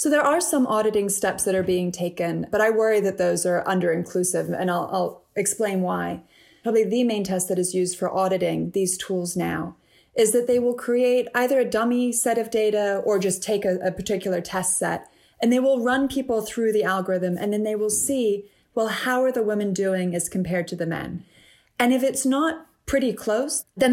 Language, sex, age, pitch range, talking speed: English, female, 20-39, 185-235 Hz, 210 wpm